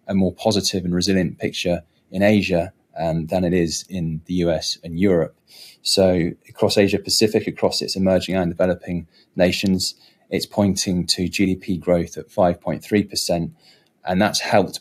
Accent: British